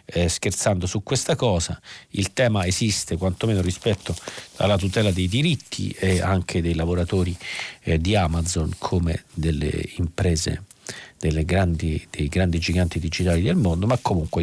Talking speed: 140 wpm